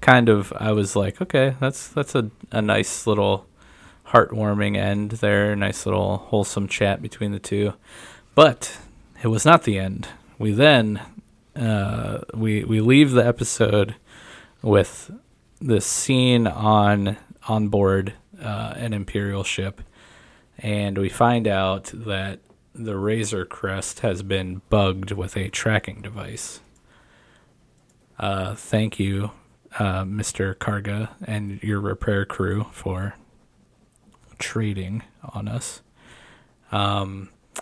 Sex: male